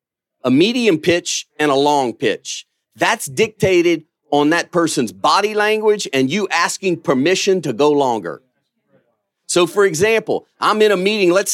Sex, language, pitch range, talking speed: male, English, 155-195 Hz, 150 wpm